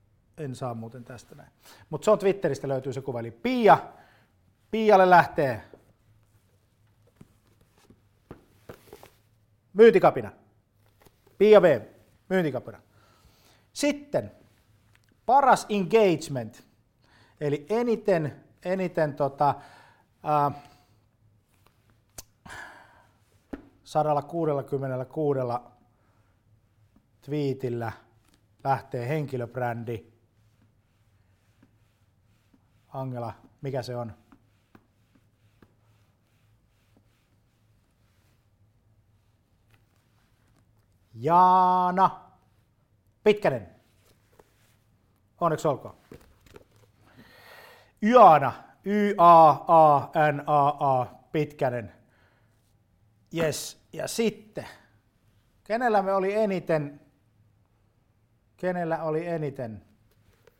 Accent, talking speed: native, 50 wpm